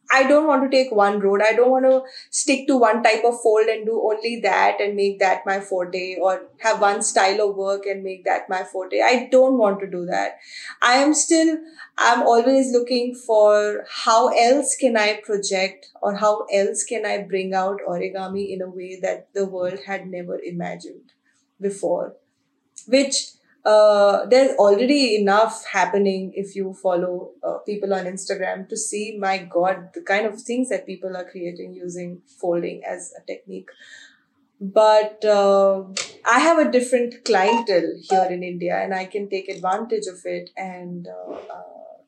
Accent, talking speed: Indian, 175 wpm